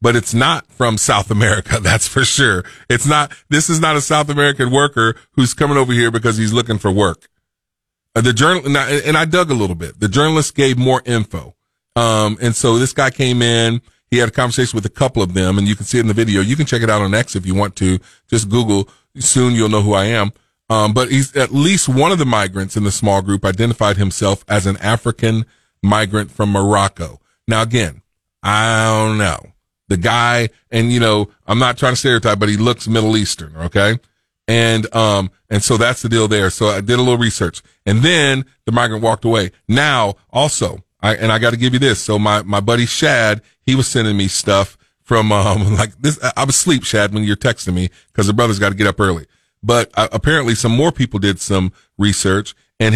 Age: 30-49